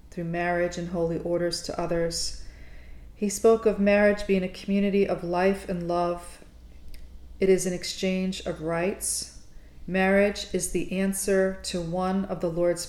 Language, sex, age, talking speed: English, female, 40-59, 155 wpm